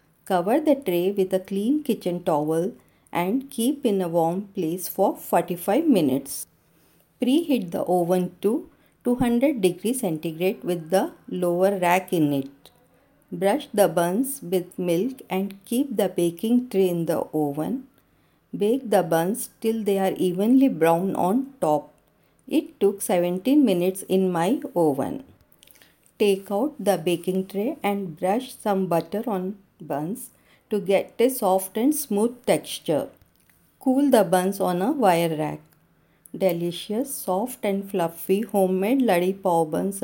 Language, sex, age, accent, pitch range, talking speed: Hindi, female, 50-69, native, 180-235 Hz, 140 wpm